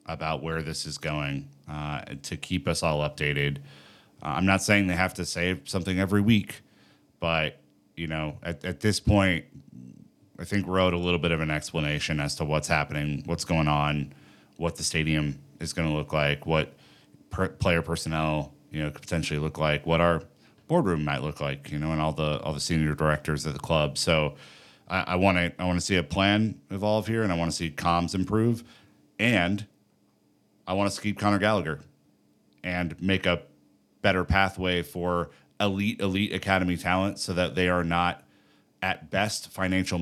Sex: male